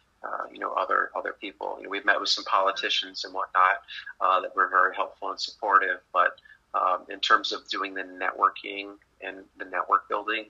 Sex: male